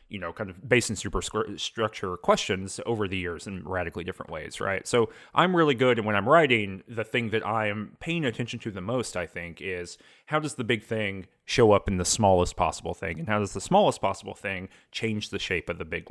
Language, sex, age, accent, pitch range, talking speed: English, male, 30-49, American, 95-130 Hz, 235 wpm